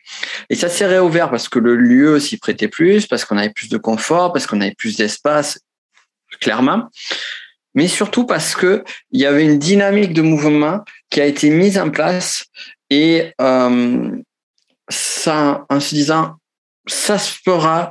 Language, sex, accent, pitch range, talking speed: French, male, French, 120-155 Hz, 160 wpm